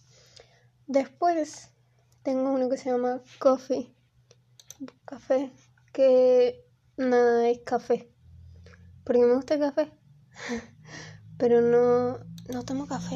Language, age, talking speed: Spanish, 10-29, 100 wpm